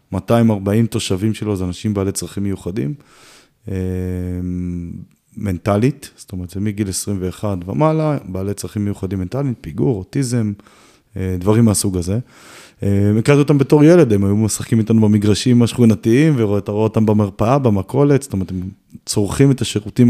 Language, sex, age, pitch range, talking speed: Hebrew, male, 20-39, 100-120 Hz, 145 wpm